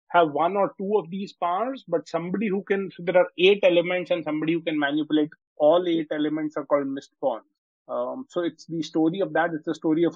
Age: 30-49